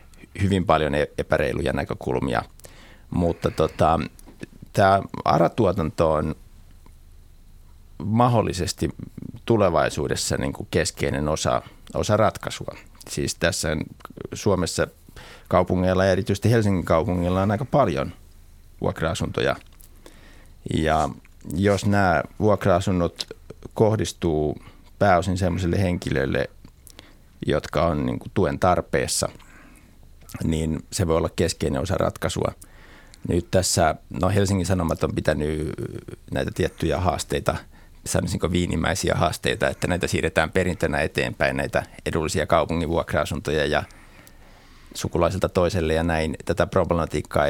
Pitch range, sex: 80-95 Hz, male